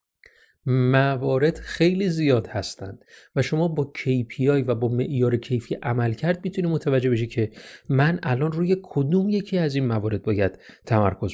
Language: Persian